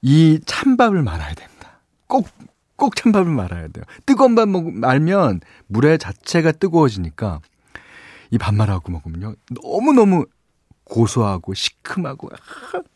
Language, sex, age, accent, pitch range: Korean, male, 40-59, native, 100-165 Hz